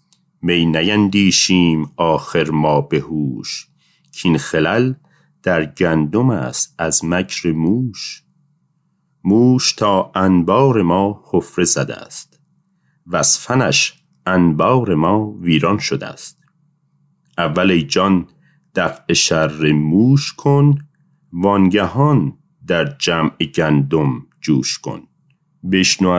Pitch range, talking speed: 85-125 Hz, 90 wpm